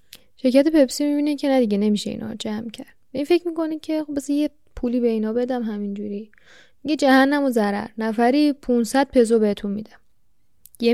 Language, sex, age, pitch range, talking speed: Persian, female, 10-29, 230-295 Hz, 170 wpm